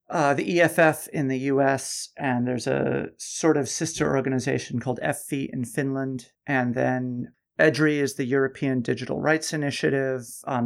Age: 40-59